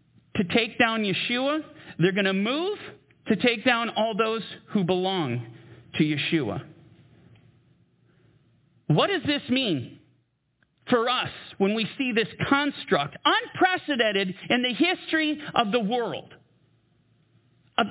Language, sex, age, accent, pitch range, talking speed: English, male, 40-59, American, 185-265 Hz, 120 wpm